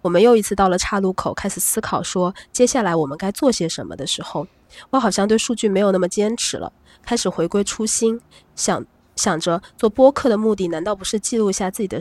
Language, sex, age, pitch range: Chinese, female, 20-39, 175-220 Hz